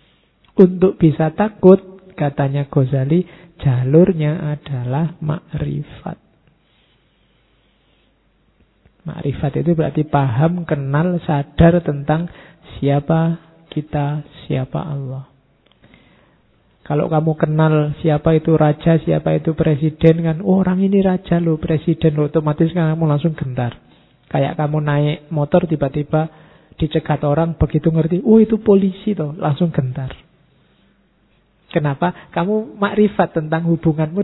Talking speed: 105 wpm